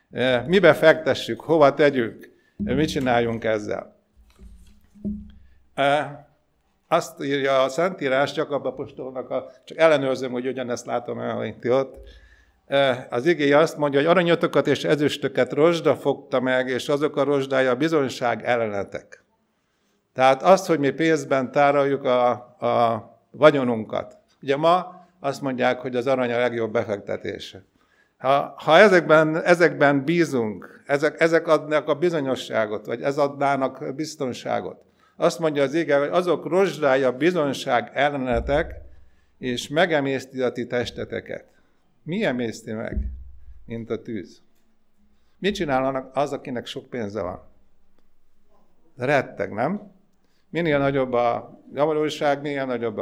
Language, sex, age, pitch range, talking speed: Hungarian, male, 50-69, 125-155 Hz, 120 wpm